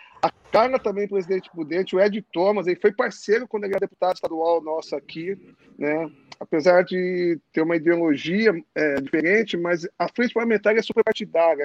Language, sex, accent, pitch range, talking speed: Portuguese, male, Brazilian, 170-220 Hz, 160 wpm